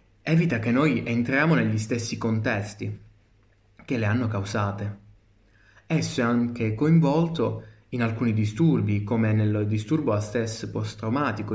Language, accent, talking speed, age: Italian, native, 125 wpm, 20-39